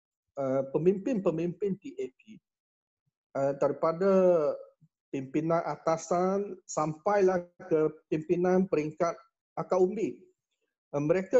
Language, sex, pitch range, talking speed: Malay, male, 150-190 Hz, 80 wpm